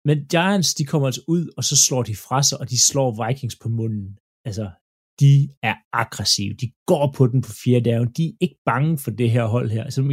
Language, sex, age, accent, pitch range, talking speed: Danish, male, 30-49, native, 120-145 Hz, 245 wpm